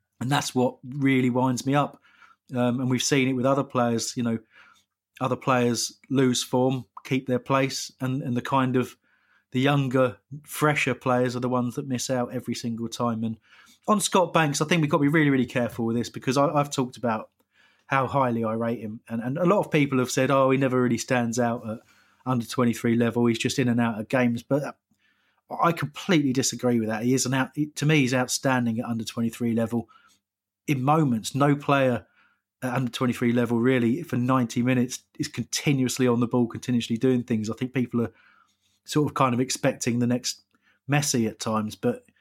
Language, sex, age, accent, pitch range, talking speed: English, male, 30-49, British, 120-135 Hz, 205 wpm